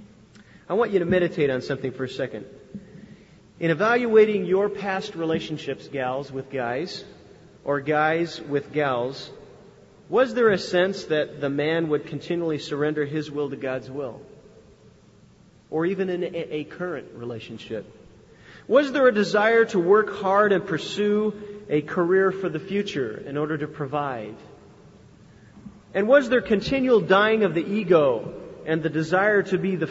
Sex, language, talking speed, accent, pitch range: male, English, 150 wpm, American, 145-200 Hz